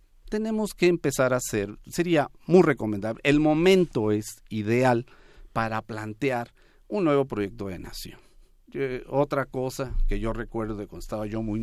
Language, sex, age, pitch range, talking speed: Spanish, male, 50-69, 110-160 Hz, 155 wpm